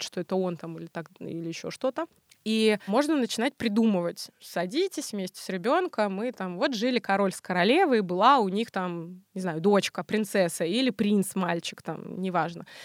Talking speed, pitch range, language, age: 175 wpm, 190-245 Hz, Russian, 20-39